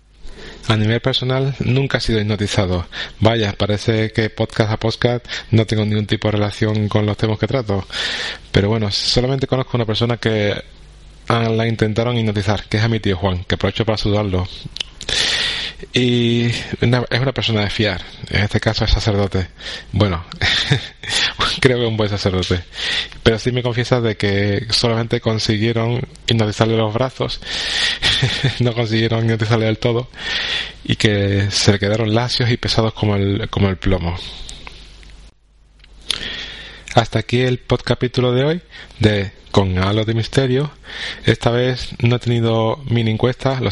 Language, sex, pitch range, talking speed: Spanish, male, 105-120 Hz, 150 wpm